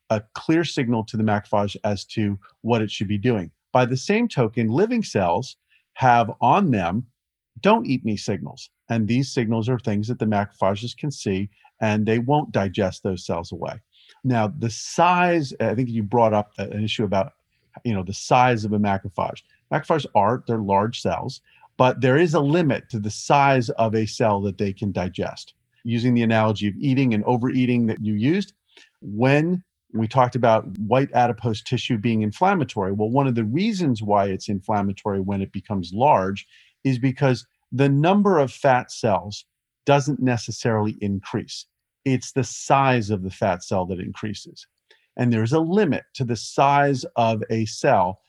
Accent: American